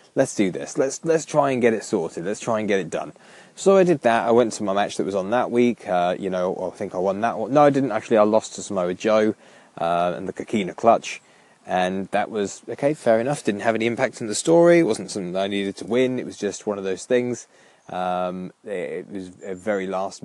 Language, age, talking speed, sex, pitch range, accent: English, 20-39, 260 wpm, male, 100-135 Hz, British